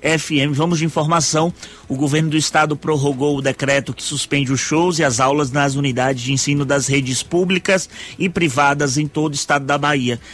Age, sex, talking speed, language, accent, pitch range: 20-39, male, 190 wpm, Portuguese, Brazilian, 140-165 Hz